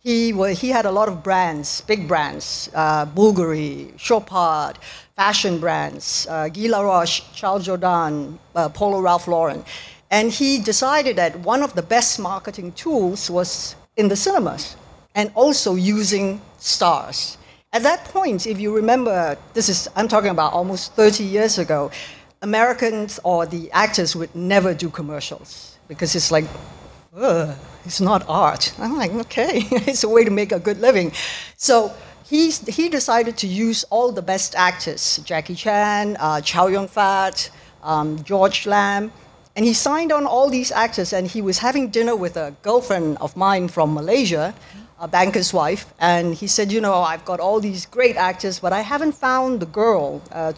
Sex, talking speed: female, 165 wpm